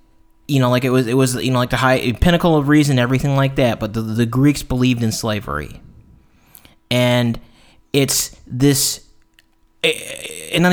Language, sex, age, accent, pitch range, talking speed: English, male, 30-49, American, 115-150 Hz, 170 wpm